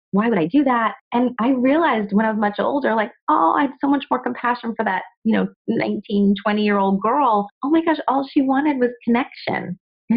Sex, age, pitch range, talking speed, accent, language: female, 30-49, 160-220 Hz, 230 wpm, American, English